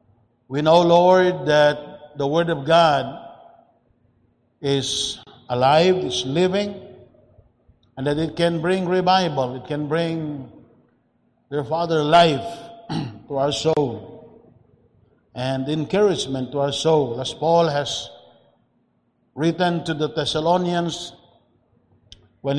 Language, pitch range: English, 130-165 Hz